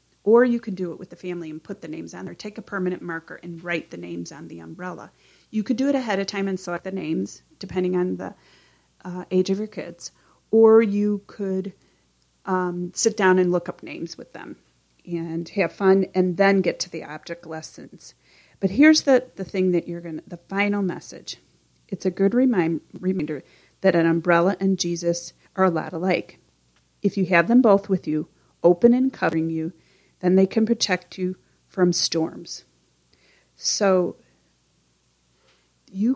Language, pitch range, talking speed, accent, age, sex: English, 160-200 Hz, 185 wpm, American, 30-49, female